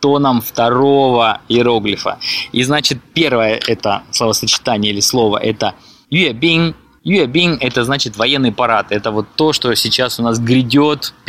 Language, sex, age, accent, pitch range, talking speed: Russian, male, 20-39, native, 110-145 Hz, 135 wpm